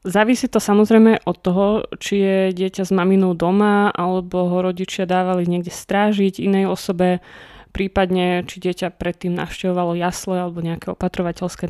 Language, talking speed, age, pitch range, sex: Slovak, 145 wpm, 20-39, 180-205 Hz, female